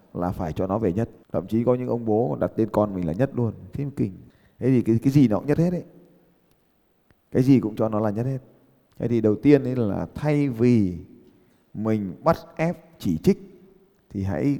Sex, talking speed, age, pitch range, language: male, 215 wpm, 20-39, 95-130 Hz, Vietnamese